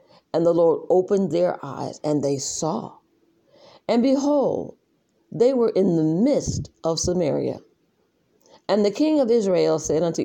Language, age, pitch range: English, 50-69, 160-260 Hz